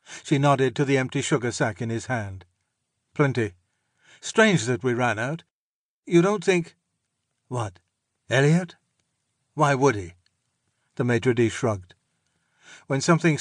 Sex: male